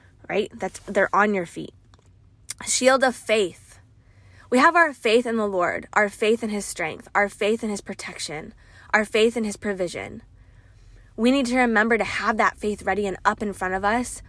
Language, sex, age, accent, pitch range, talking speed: English, female, 10-29, American, 185-230 Hz, 195 wpm